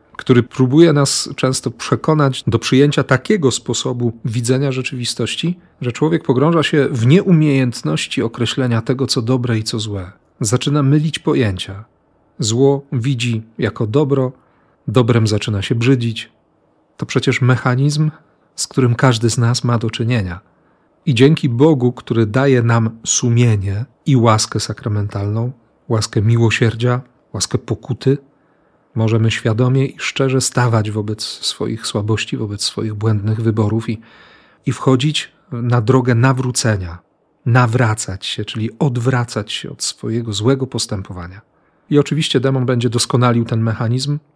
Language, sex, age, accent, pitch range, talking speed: Polish, male, 40-59, native, 115-135 Hz, 125 wpm